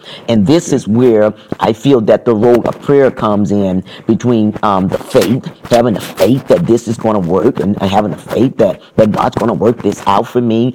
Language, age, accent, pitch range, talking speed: English, 40-59, American, 105-130 Hz, 225 wpm